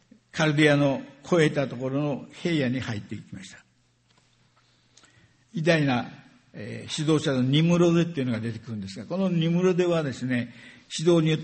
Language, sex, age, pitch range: Japanese, male, 60-79, 120-165 Hz